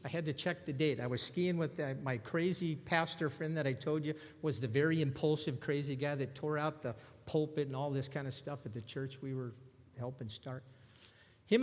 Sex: male